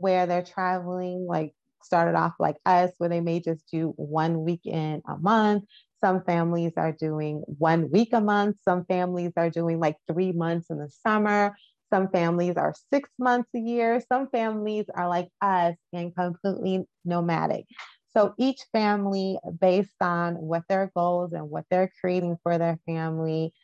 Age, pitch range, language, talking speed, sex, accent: 30-49, 170-205 Hz, English, 165 wpm, female, American